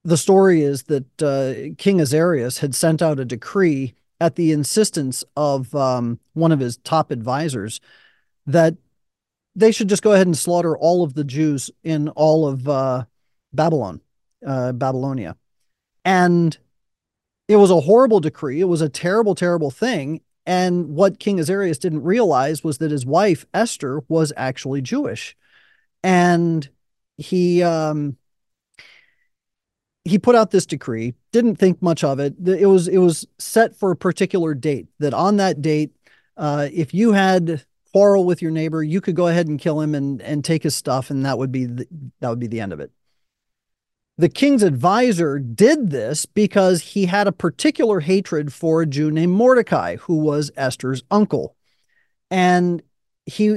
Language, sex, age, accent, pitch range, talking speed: English, male, 40-59, American, 145-190 Hz, 165 wpm